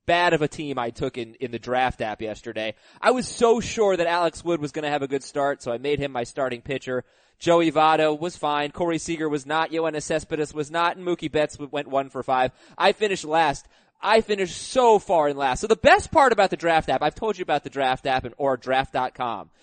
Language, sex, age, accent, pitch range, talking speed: English, male, 20-39, American, 140-190 Hz, 240 wpm